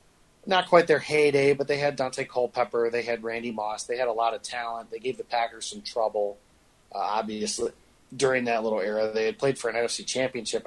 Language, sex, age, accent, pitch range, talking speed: English, male, 30-49, American, 115-140 Hz, 215 wpm